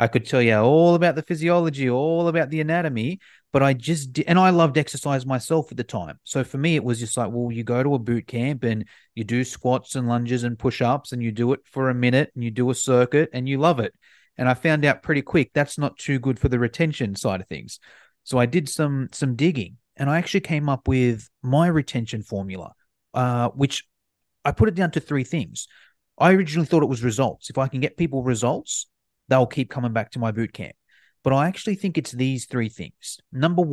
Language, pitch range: English, 120-155 Hz